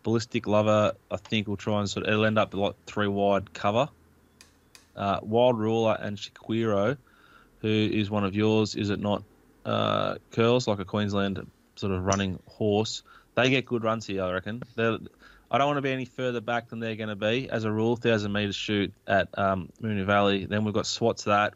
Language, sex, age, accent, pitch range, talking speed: English, male, 20-39, Australian, 95-115 Hz, 200 wpm